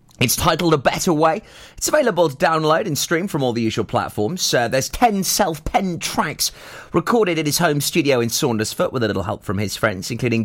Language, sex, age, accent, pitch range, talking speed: English, male, 30-49, British, 115-160 Hz, 205 wpm